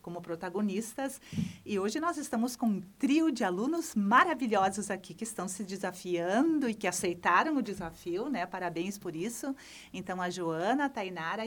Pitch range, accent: 190-255 Hz, Brazilian